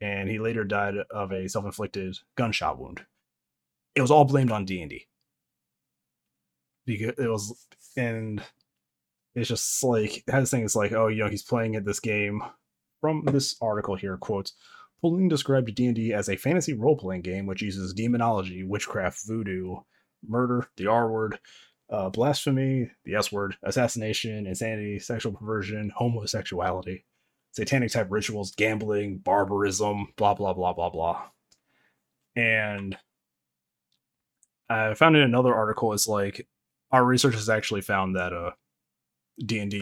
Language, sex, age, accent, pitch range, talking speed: English, male, 30-49, American, 95-115 Hz, 140 wpm